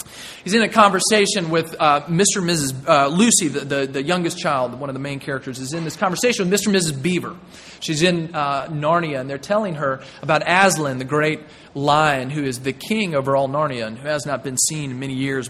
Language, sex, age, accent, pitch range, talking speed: English, male, 30-49, American, 135-180 Hz, 230 wpm